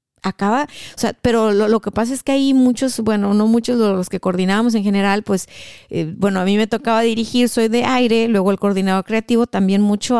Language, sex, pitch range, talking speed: Spanish, female, 195-245 Hz, 225 wpm